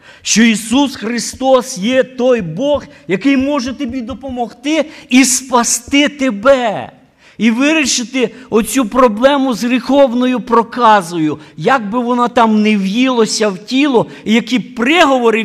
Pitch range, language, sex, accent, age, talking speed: 165-260 Hz, Ukrainian, male, native, 50-69, 120 wpm